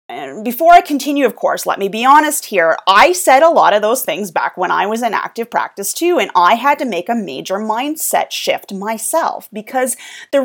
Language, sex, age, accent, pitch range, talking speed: English, female, 30-49, American, 215-310 Hz, 215 wpm